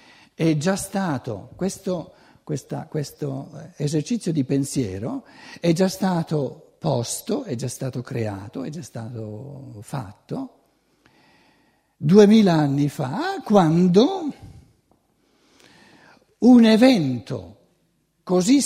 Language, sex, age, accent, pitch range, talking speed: Italian, male, 60-79, native, 115-175 Hz, 90 wpm